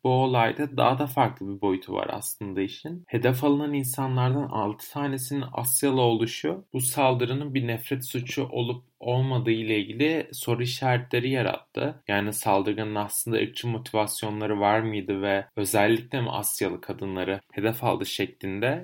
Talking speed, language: 140 wpm, Turkish